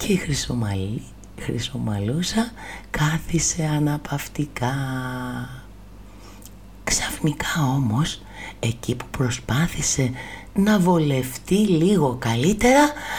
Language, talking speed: Greek, 70 wpm